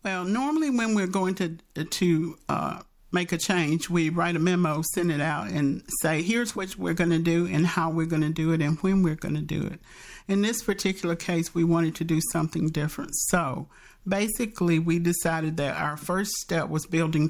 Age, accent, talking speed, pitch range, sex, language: 50-69, American, 210 wpm, 155-175 Hz, male, English